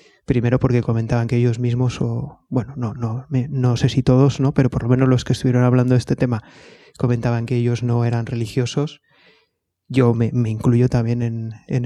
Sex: male